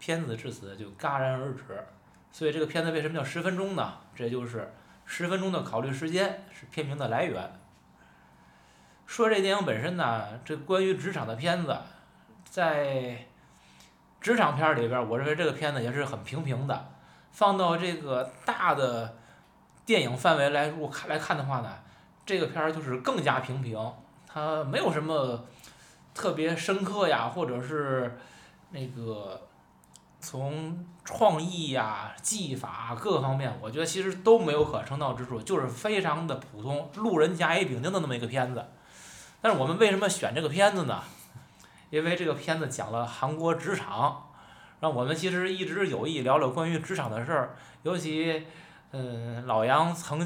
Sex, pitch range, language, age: male, 125-175 Hz, Chinese, 20-39